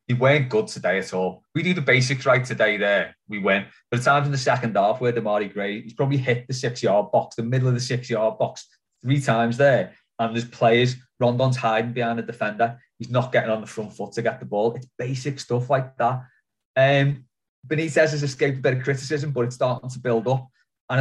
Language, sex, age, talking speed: English, male, 20-39, 225 wpm